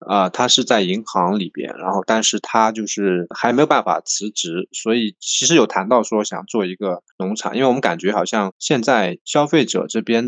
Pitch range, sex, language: 100-125 Hz, male, Chinese